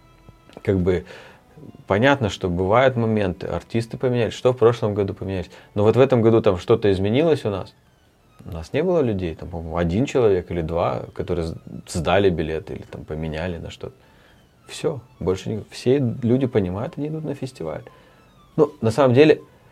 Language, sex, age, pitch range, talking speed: Russian, male, 30-49, 90-125 Hz, 165 wpm